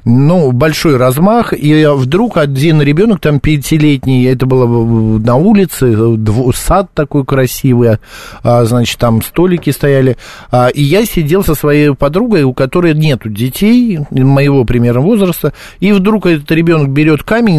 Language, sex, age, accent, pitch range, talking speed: Russian, male, 50-69, native, 120-165 Hz, 145 wpm